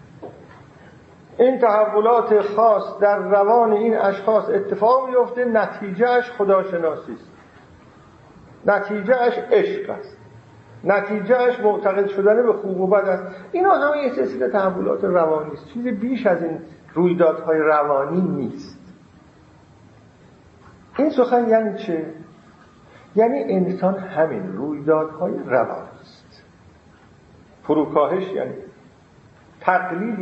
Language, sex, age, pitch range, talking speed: Persian, male, 50-69, 190-245 Hz, 100 wpm